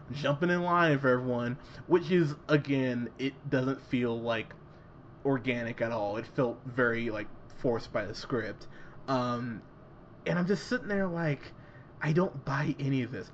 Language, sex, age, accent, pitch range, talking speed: English, male, 20-39, American, 120-150 Hz, 160 wpm